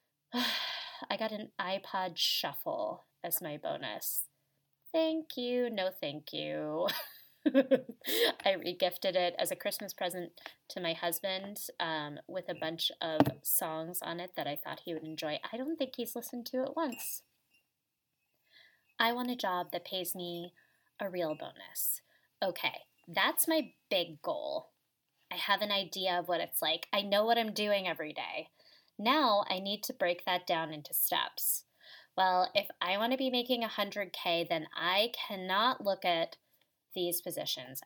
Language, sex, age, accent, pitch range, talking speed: English, female, 20-39, American, 175-250 Hz, 160 wpm